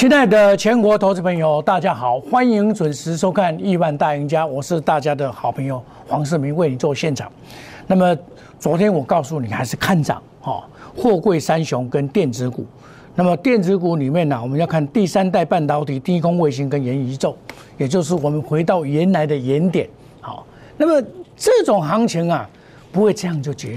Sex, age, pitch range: male, 50-69, 140-195 Hz